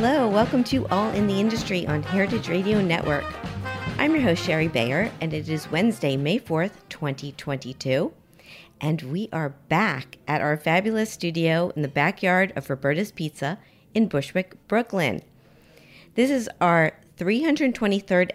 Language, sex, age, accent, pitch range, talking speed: English, female, 40-59, American, 150-205 Hz, 145 wpm